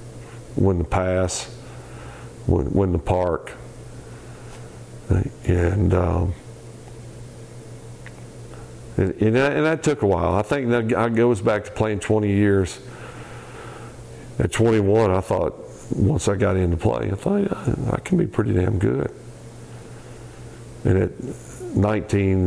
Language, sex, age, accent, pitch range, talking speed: English, male, 50-69, American, 95-120 Hz, 130 wpm